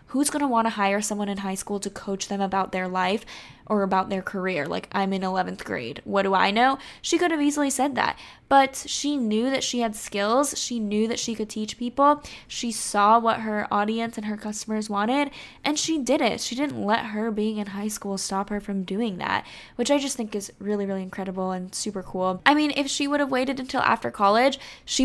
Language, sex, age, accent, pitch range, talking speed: English, female, 10-29, American, 195-230 Hz, 230 wpm